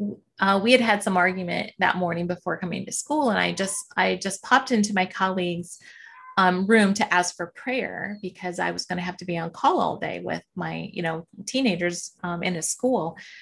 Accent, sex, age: American, female, 30-49